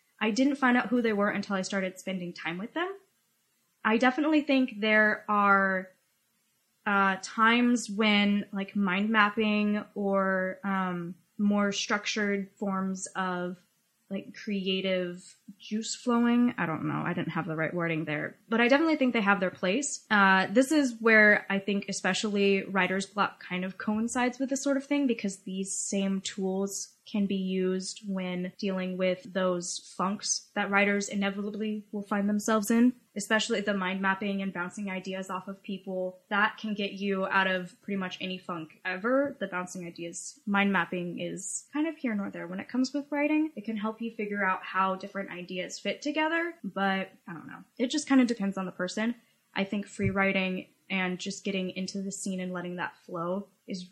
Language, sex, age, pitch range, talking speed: English, female, 10-29, 185-220 Hz, 180 wpm